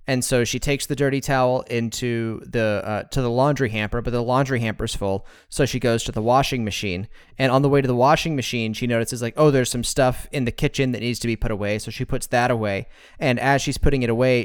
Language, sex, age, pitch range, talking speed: English, male, 30-49, 115-140 Hz, 255 wpm